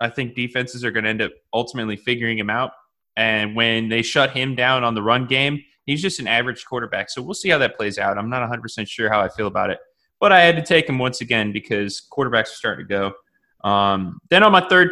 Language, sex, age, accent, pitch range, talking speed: English, male, 20-39, American, 110-145 Hz, 250 wpm